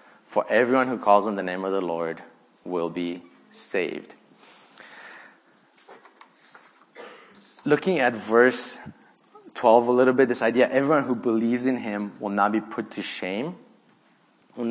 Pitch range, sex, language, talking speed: 105-130 Hz, male, English, 140 wpm